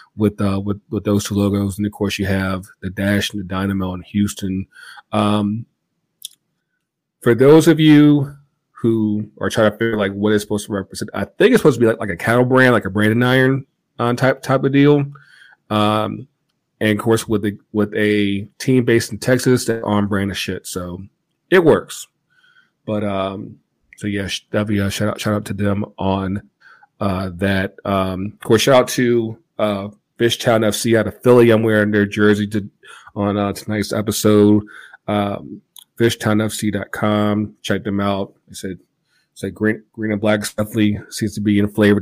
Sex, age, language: male, 40-59, English